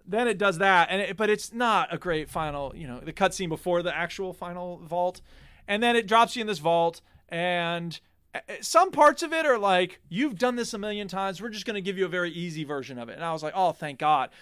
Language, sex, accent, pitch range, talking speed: English, male, American, 170-215 Hz, 255 wpm